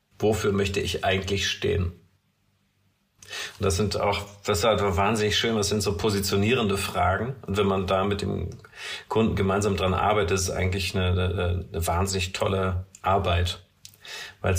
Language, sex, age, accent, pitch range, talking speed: German, male, 40-59, German, 95-105 Hz, 165 wpm